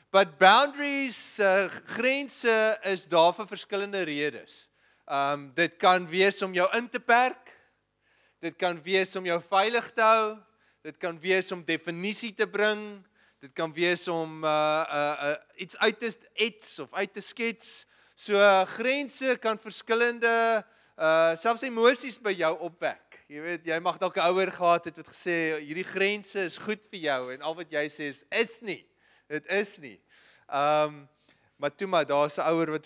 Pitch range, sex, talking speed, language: 165-215 Hz, male, 165 wpm, English